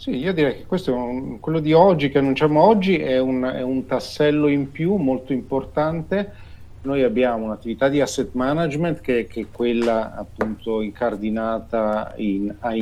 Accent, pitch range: native, 105-135 Hz